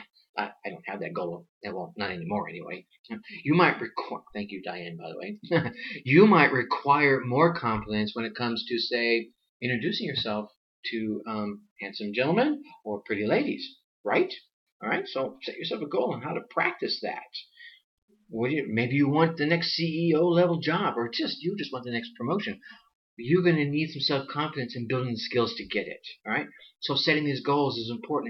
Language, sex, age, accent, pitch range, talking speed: English, male, 40-59, American, 115-170 Hz, 180 wpm